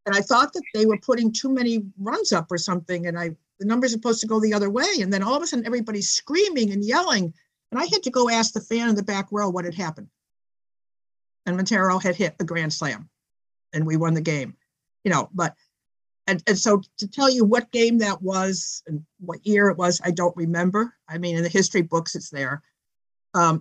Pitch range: 170-220 Hz